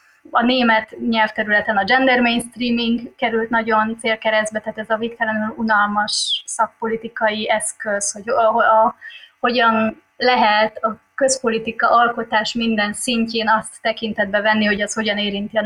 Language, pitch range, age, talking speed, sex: Hungarian, 210-235 Hz, 20-39, 135 wpm, female